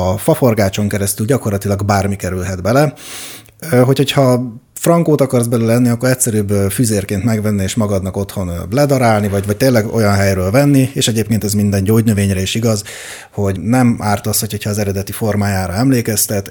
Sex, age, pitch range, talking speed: male, 30-49, 100-120 Hz, 155 wpm